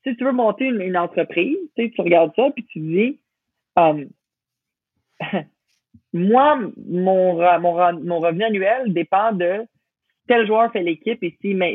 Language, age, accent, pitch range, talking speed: French, 30-49, Canadian, 165-225 Hz, 160 wpm